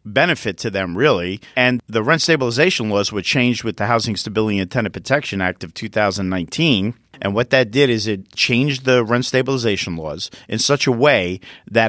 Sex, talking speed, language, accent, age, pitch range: male, 185 wpm, English, American, 50-69, 100-130 Hz